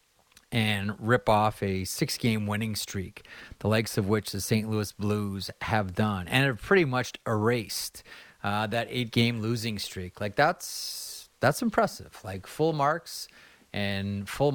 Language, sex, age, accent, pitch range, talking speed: English, male, 30-49, American, 100-120 Hz, 155 wpm